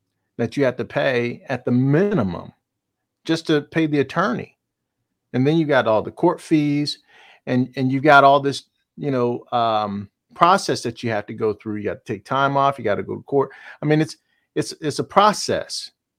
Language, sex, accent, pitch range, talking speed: English, male, American, 125-155 Hz, 210 wpm